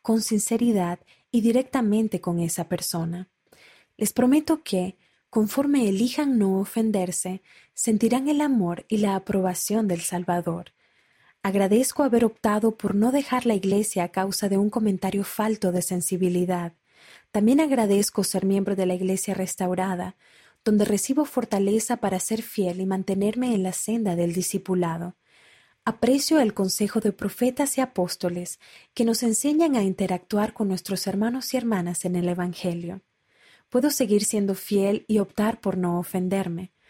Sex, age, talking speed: female, 30-49, 145 wpm